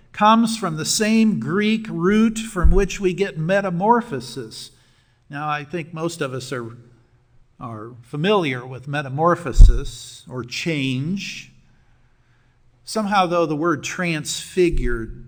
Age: 50-69